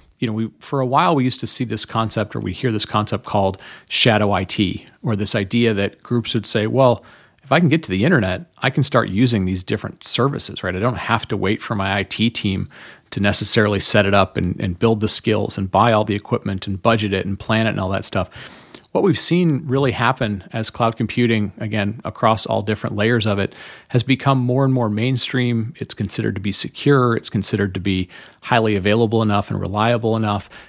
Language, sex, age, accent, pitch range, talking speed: English, male, 40-59, American, 100-120 Hz, 220 wpm